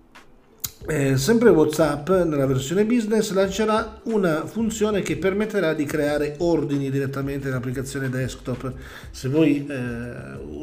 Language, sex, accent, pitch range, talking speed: Italian, male, native, 125-150 Hz, 115 wpm